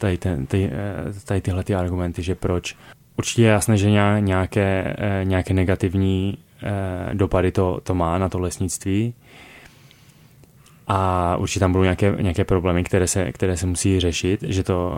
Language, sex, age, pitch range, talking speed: Czech, male, 20-39, 90-105 Hz, 150 wpm